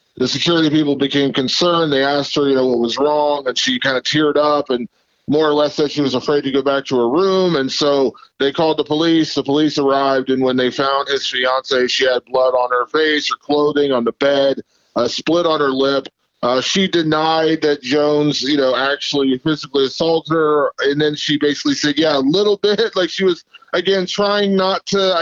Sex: male